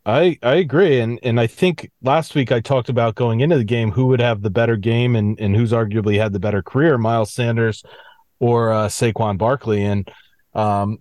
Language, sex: English, male